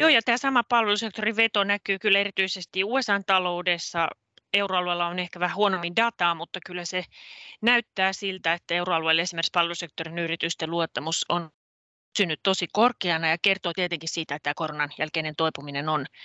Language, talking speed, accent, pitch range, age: Finnish, 150 wpm, native, 165-195 Hz, 30-49